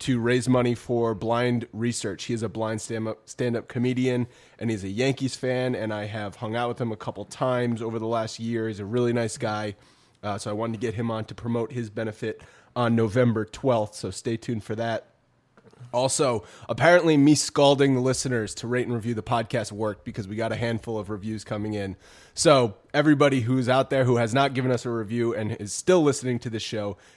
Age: 20-39